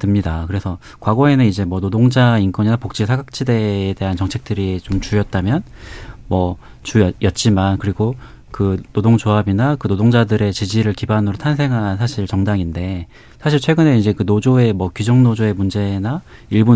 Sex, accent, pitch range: male, native, 100-125 Hz